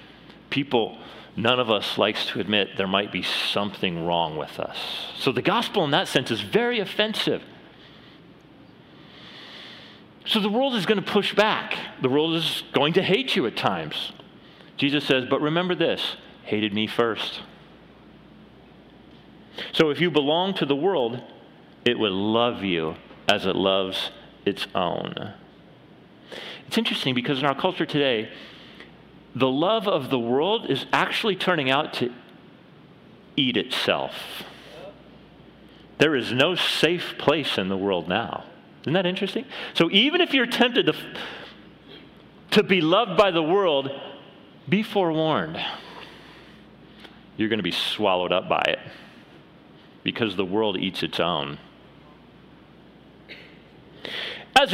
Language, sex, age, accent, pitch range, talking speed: English, male, 40-59, American, 120-195 Hz, 135 wpm